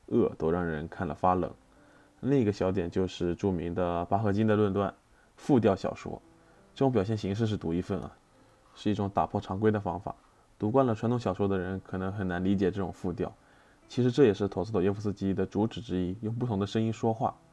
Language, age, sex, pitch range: Chinese, 20-39, male, 95-110 Hz